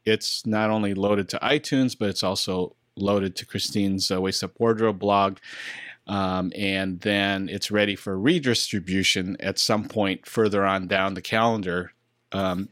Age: 40-59